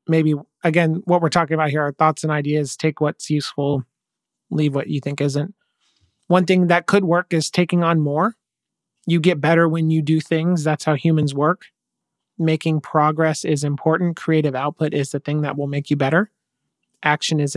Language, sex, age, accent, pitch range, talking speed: English, male, 30-49, American, 145-165 Hz, 190 wpm